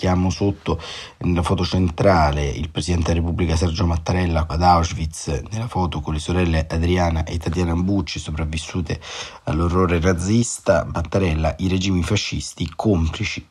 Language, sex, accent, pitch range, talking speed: Italian, male, native, 85-95 Hz, 130 wpm